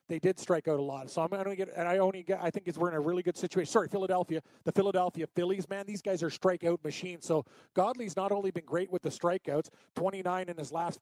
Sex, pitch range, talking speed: male, 160-185 Hz, 260 wpm